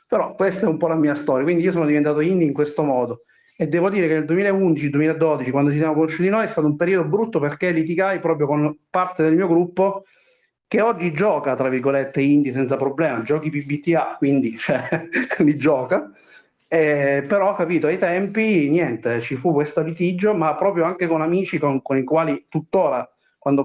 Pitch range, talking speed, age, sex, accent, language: 140-175 Hz, 195 wpm, 30-49, male, native, Italian